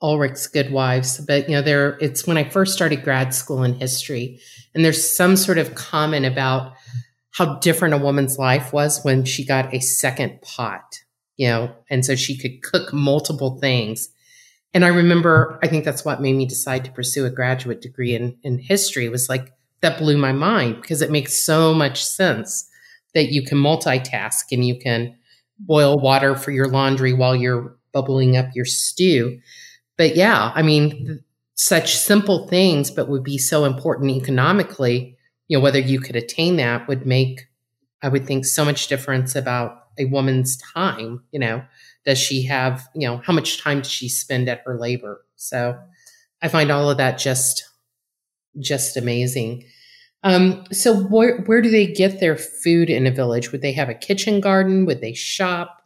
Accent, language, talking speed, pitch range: American, English, 180 wpm, 130-160 Hz